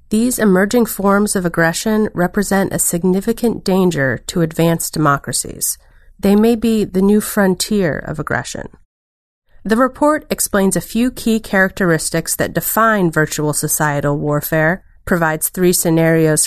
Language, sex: English, female